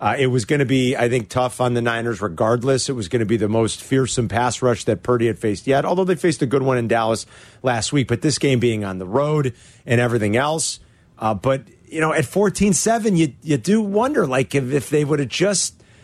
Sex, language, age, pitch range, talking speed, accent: male, English, 40-59, 115-150 Hz, 245 wpm, American